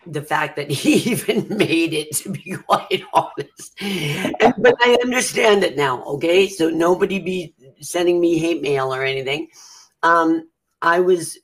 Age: 50-69